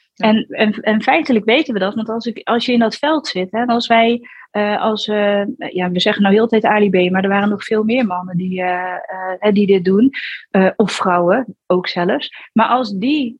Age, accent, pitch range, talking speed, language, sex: 30-49, Dutch, 200-240 Hz, 230 wpm, Dutch, female